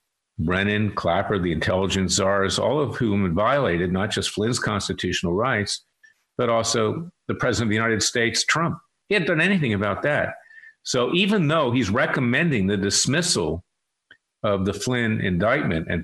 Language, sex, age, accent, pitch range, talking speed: English, male, 50-69, American, 95-130 Hz, 155 wpm